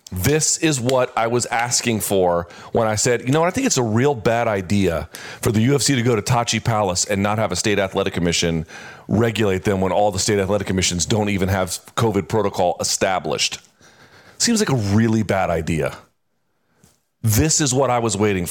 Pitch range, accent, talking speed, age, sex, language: 105-145 Hz, American, 200 wpm, 40-59, male, English